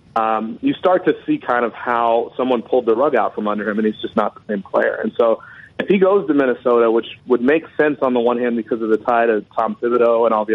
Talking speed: 275 wpm